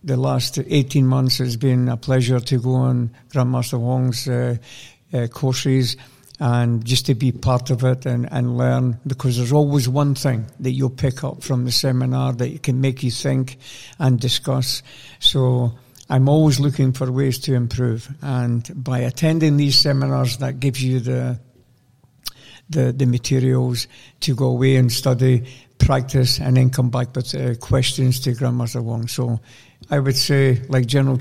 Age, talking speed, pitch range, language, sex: 60-79, 165 wpm, 125-135 Hz, Czech, male